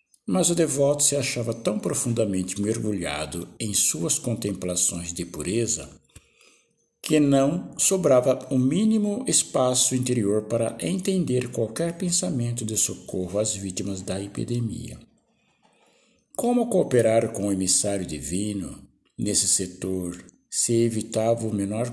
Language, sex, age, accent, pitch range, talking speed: Portuguese, male, 60-79, Brazilian, 100-140 Hz, 115 wpm